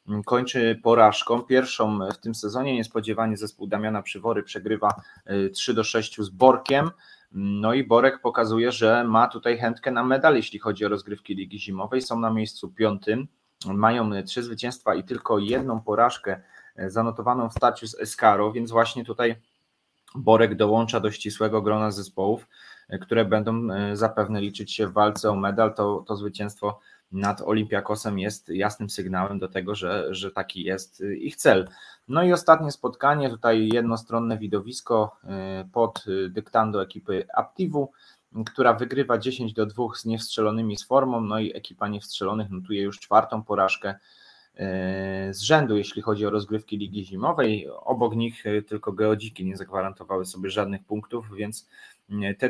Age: 20-39